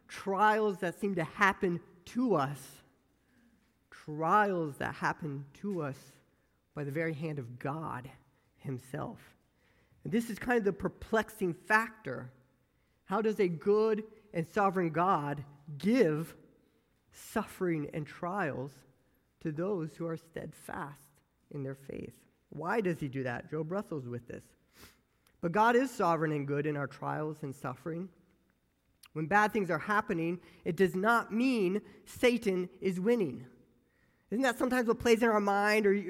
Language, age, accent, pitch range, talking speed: English, 40-59, American, 150-215 Hz, 145 wpm